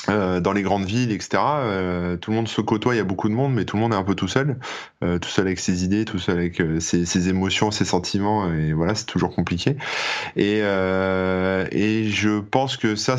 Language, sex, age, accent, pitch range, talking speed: French, male, 20-39, French, 90-110 Hz, 245 wpm